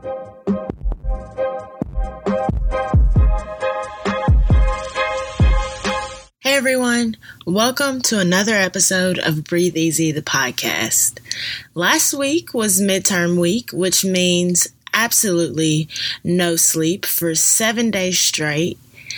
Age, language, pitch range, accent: 20-39, English, 165-225 Hz, American